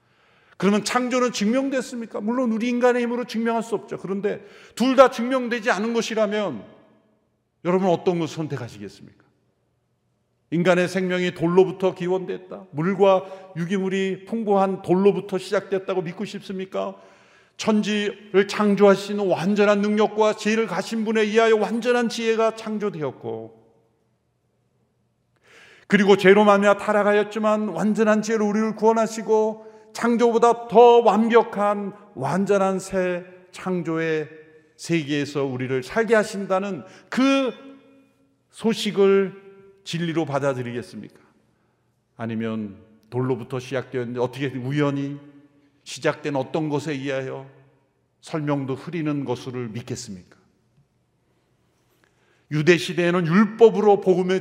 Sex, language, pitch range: male, Korean, 150-215 Hz